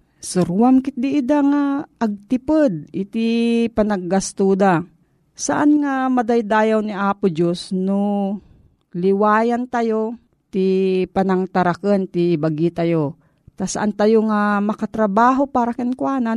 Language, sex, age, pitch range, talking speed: Filipino, female, 40-59, 180-235 Hz, 105 wpm